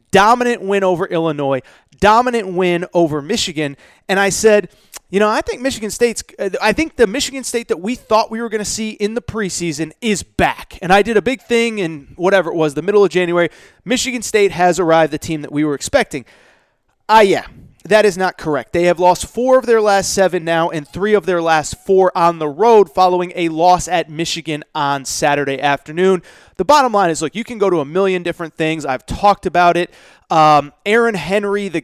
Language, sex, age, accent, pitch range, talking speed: English, male, 30-49, American, 160-200 Hz, 215 wpm